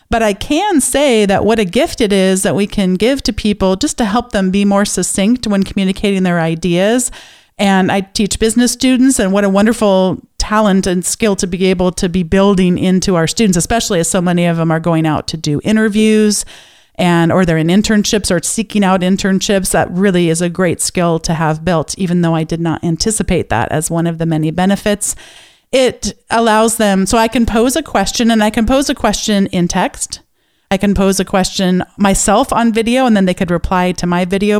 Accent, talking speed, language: American, 215 wpm, English